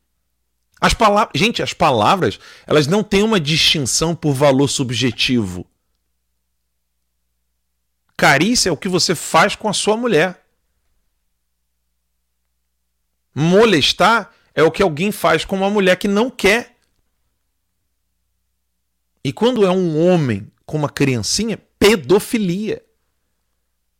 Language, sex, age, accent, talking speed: Portuguese, male, 40-59, Brazilian, 105 wpm